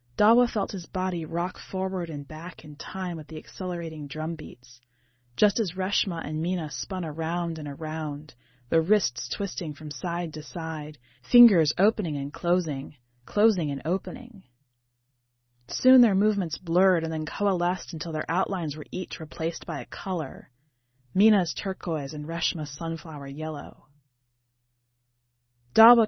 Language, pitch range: English, 145-205 Hz